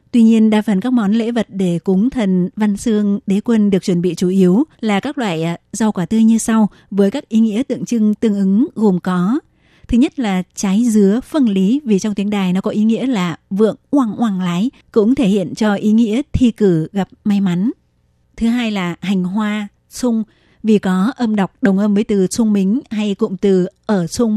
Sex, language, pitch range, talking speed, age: female, Vietnamese, 190-230 Hz, 220 wpm, 20-39